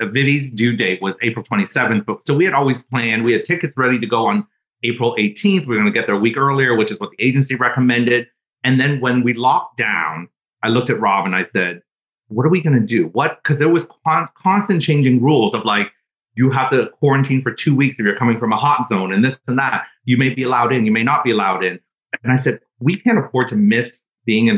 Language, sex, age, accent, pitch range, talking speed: English, male, 30-49, American, 115-140 Hz, 250 wpm